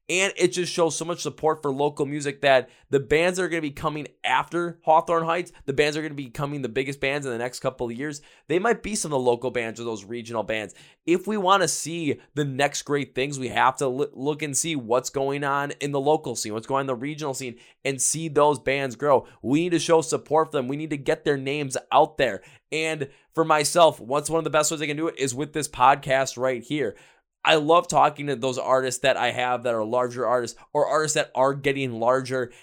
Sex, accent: male, American